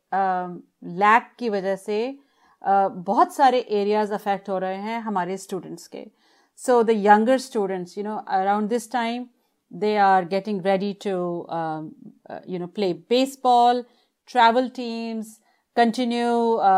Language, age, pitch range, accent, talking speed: Hindi, 40-59, 190-225 Hz, native, 125 wpm